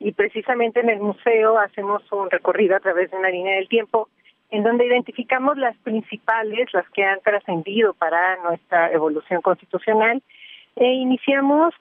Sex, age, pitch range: female, 40-59, 190-240 Hz